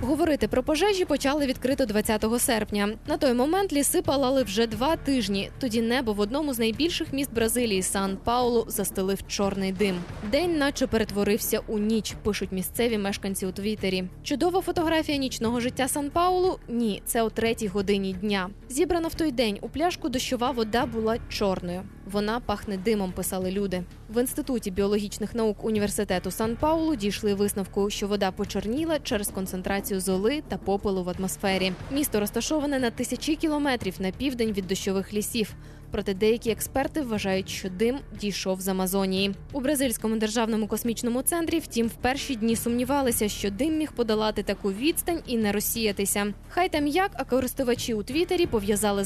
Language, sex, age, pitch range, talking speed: Ukrainian, female, 20-39, 205-270 Hz, 155 wpm